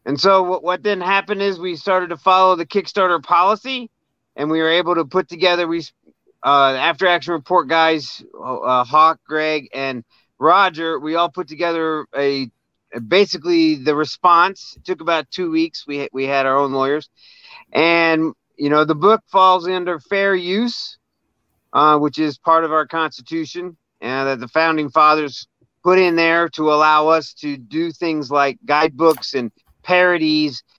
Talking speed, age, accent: 165 wpm, 40-59, American